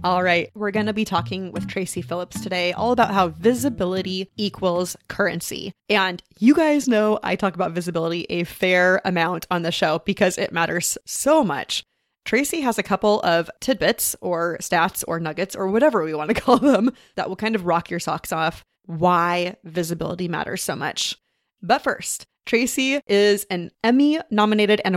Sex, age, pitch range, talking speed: female, 30-49, 175-220 Hz, 175 wpm